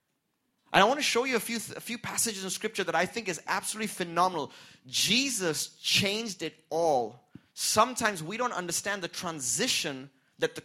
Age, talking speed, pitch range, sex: 30-49, 175 wpm, 135-195 Hz, male